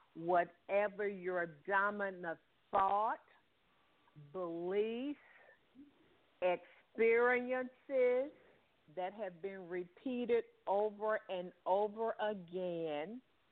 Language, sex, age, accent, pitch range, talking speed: English, female, 50-69, American, 180-220 Hz, 60 wpm